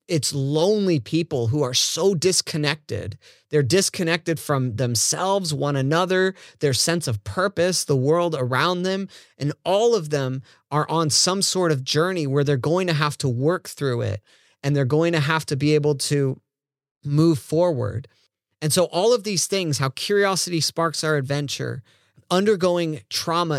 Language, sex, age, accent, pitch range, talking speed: English, male, 30-49, American, 130-165 Hz, 165 wpm